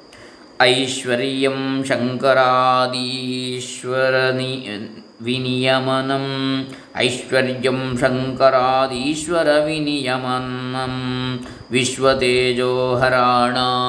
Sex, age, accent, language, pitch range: male, 20-39, native, Kannada, 125-155 Hz